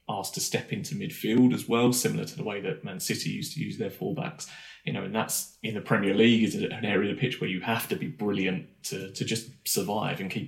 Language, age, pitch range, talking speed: English, 20-39, 115-140 Hz, 260 wpm